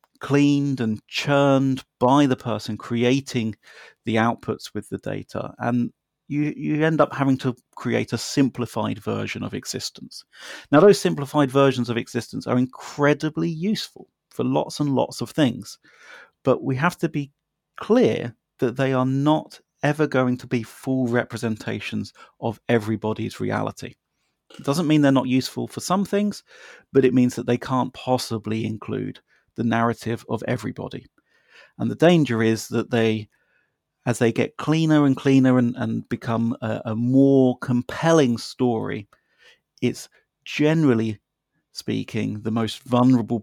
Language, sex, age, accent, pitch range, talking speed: English, male, 30-49, British, 115-135 Hz, 145 wpm